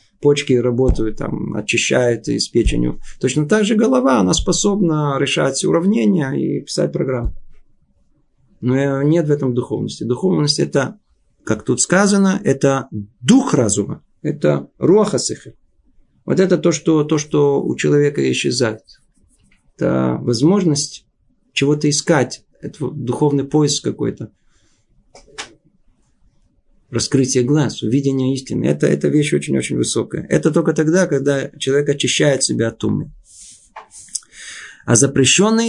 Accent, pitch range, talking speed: native, 130-175 Hz, 115 wpm